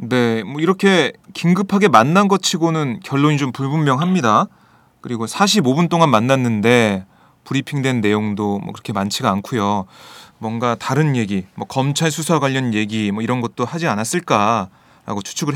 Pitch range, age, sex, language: 125-185 Hz, 30-49, male, Korean